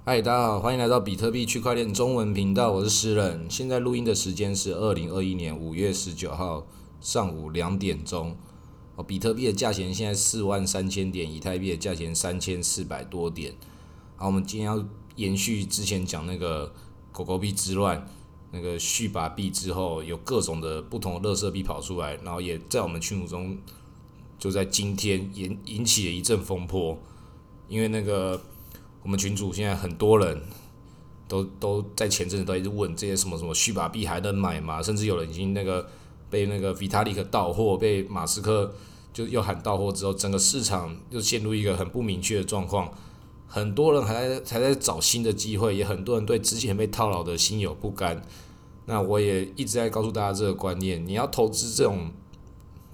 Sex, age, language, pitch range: male, 20-39, Chinese, 90-105 Hz